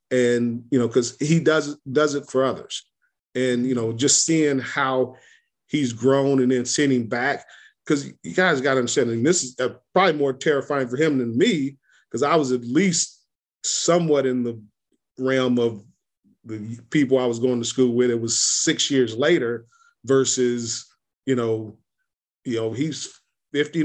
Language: English